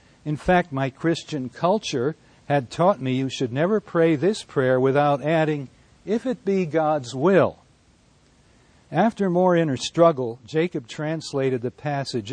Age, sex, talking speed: 60-79, male, 140 wpm